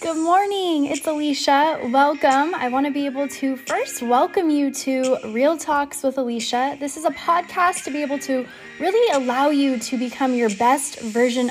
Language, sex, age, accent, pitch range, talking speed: English, female, 10-29, American, 225-290 Hz, 180 wpm